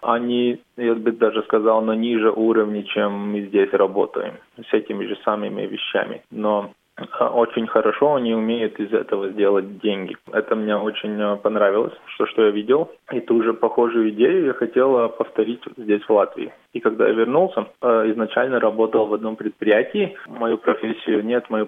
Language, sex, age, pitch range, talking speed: Russian, male, 20-39, 105-115 Hz, 160 wpm